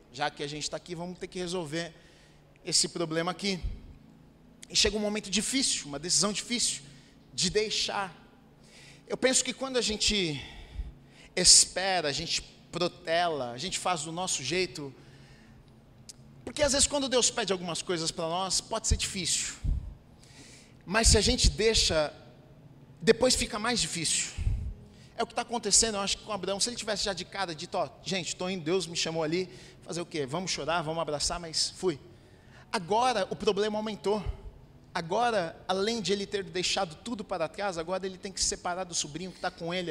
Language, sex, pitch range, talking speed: Portuguese, male, 155-200 Hz, 180 wpm